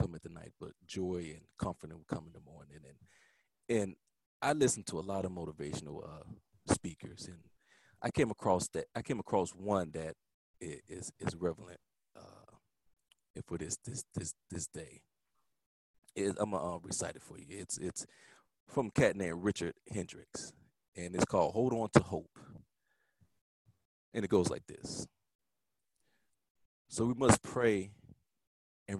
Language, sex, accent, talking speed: English, male, American, 165 wpm